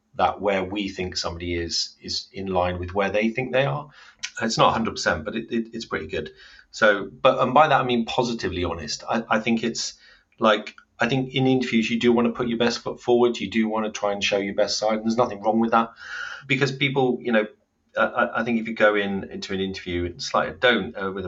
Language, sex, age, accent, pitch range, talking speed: English, male, 30-49, British, 90-115 Hz, 245 wpm